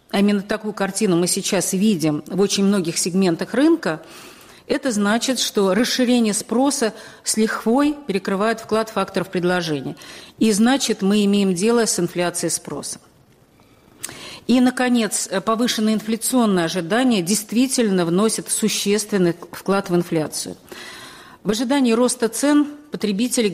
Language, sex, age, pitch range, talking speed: Russian, female, 40-59, 180-230 Hz, 120 wpm